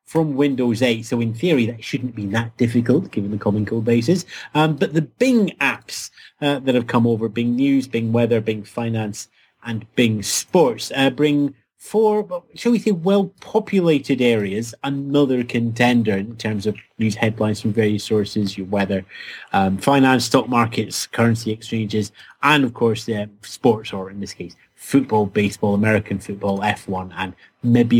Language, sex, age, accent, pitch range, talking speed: English, male, 30-49, British, 110-165 Hz, 165 wpm